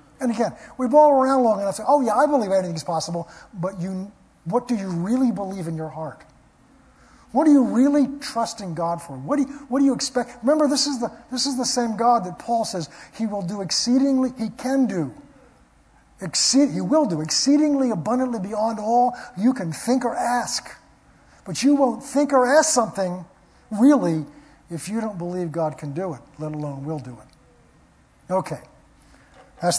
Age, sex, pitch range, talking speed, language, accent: 50-69, male, 165-245 Hz, 190 wpm, English, American